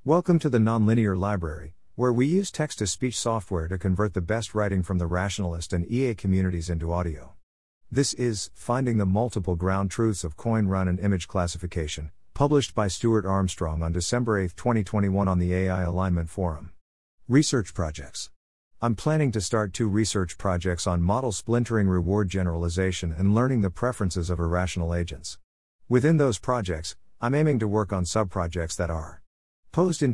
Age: 50-69